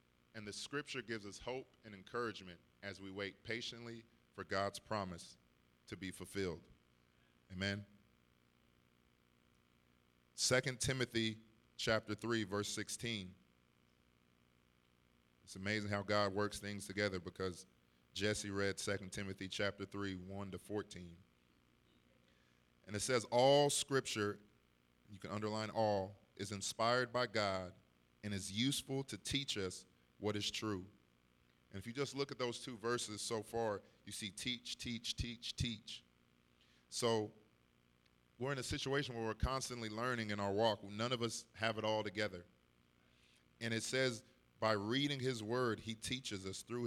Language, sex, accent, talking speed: English, male, American, 140 wpm